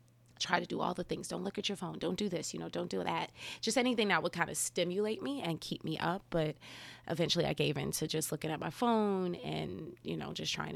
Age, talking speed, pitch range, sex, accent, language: 30-49, 260 wpm, 155-190 Hz, female, American, English